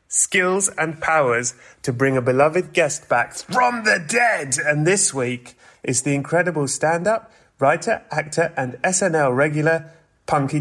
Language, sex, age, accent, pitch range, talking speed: English, male, 30-49, British, 135-170 Hz, 140 wpm